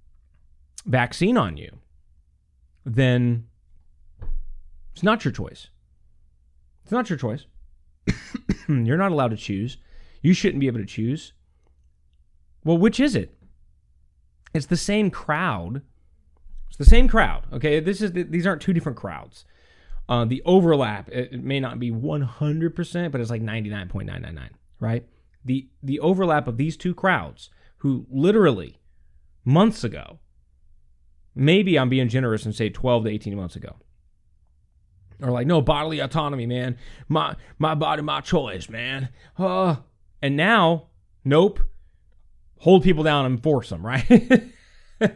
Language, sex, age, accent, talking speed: English, male, 30-49, American, 135 wpm